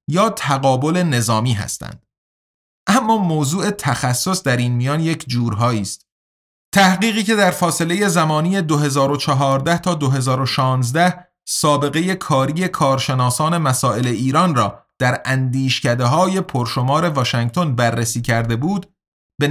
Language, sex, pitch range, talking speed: Persian, male, 120-175 Hz, 110 wpm